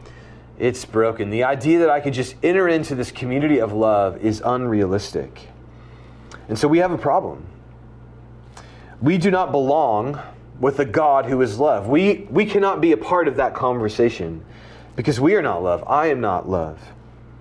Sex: male